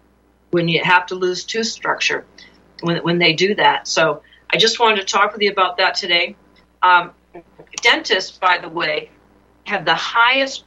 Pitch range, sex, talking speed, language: 165-200 Hz, female, 175 wpm, English